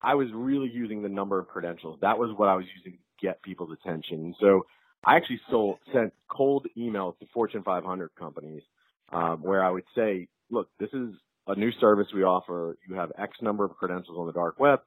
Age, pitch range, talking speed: 40-59, 85-105 Hz, 215 wpm